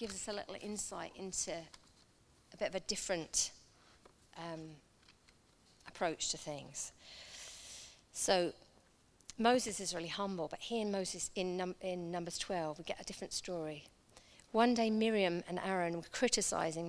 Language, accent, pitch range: English, British, 175-215 Hz